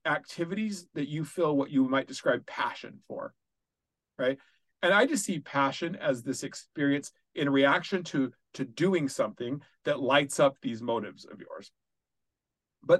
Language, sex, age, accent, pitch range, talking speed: English, male, 40-59, American, 135-195 Hz, 150 wpm